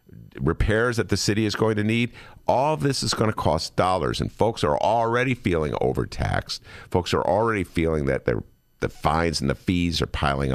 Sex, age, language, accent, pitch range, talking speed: male, 50-69, English, American, 75-100 Hz, 200 wpm